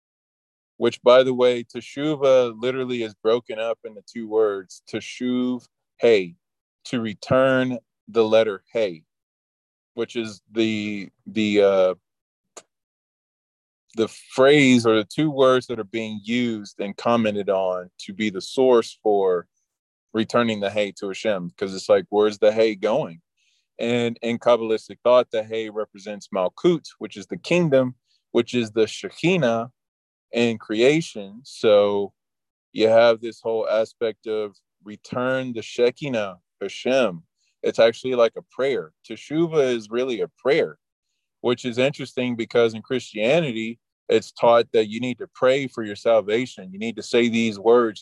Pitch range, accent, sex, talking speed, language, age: 105-125 Hz, American, male, 145 wpm, English, 20-39